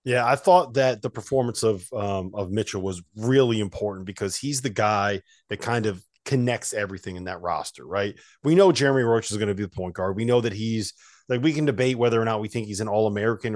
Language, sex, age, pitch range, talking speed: English, male, 30-49, 100-125 Hz, 240 wpm